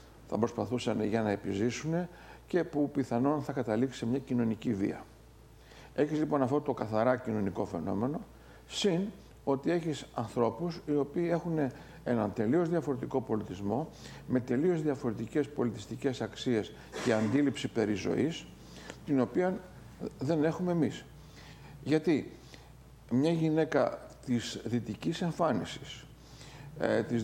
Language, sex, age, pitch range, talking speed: English, male, 50-69, 115-155 Hz, 115 wpm